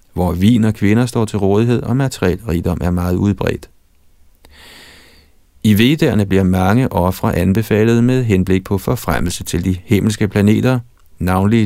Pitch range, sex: 90-115 Hz, male